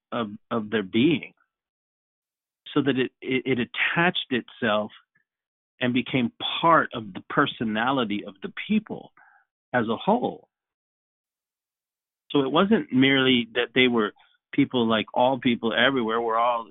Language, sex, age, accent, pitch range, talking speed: English, male, 40-59, American, 110-135 Hz, 135 wpm